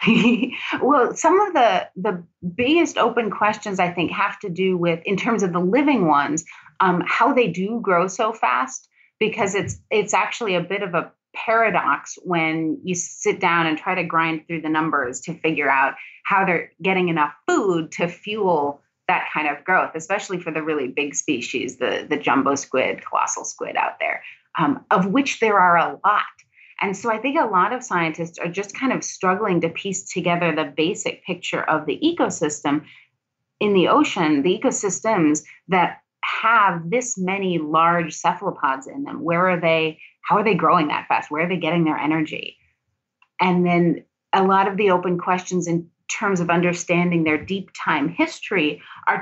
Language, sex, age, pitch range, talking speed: English, female, 30-49, 165-215 Hz, 180 wpm